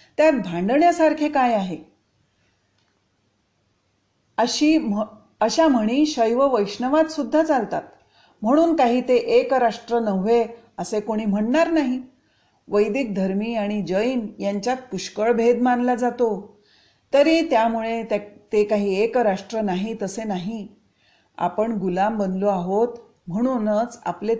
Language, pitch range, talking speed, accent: Marathi, 195-245 Hz, 115 wpm, native